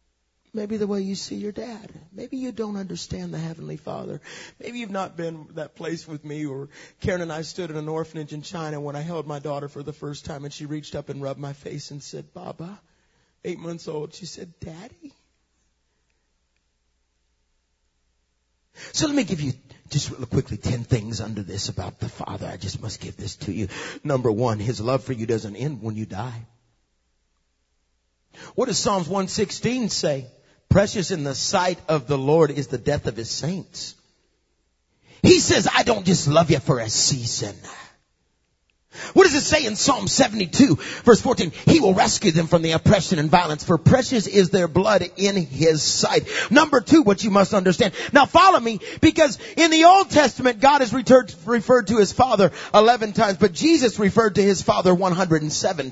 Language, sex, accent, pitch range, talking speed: English, male, American, 135-210 Hz, 185 wpm